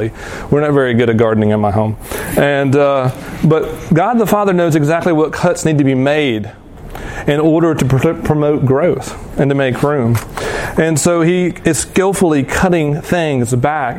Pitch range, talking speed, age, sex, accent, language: 125-155 Hz, 175 wpm, 40-59, male, American, English